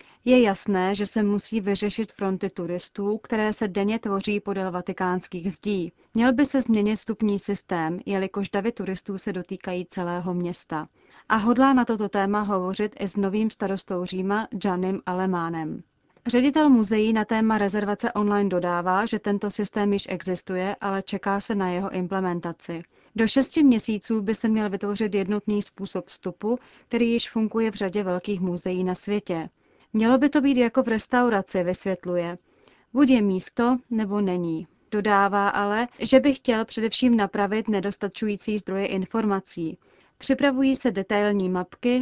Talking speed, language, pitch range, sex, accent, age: 150 wpm, Czech, 190-220 Hz, female, native, 30-49